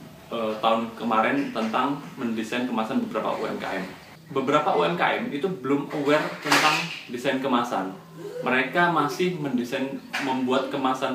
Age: 20-39